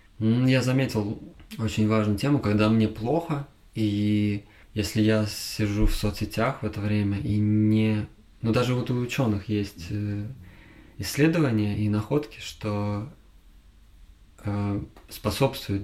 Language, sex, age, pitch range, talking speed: Russian, male, 20-39, 105-115 Hz, 115 wpm